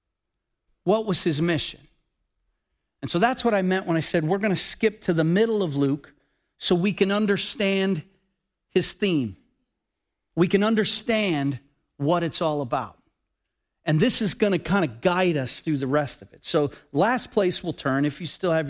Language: English